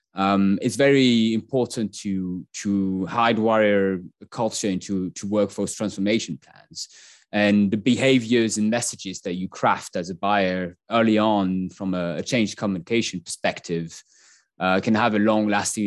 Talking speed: 150 wpm